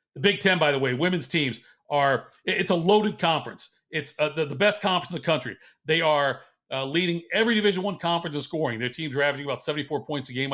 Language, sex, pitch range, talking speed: English, male, 140-175 Hz, 230 wpm